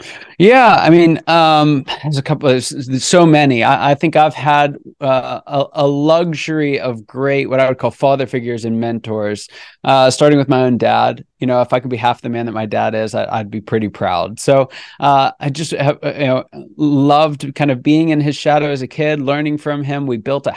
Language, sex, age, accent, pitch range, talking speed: English, male, 20-39, American, 120-145 Hz, 220 wpm